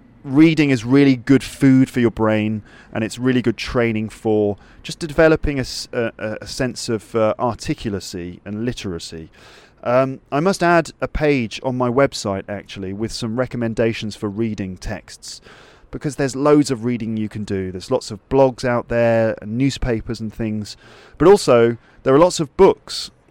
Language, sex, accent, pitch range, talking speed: English, male, British, 105-135 Hz, 170 wpm